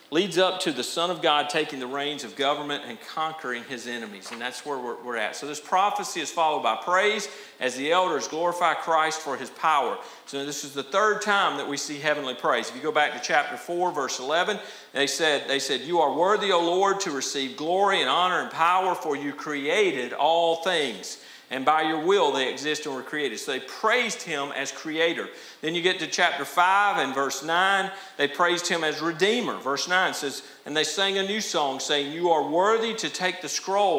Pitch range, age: 145-185 Hz, 50-69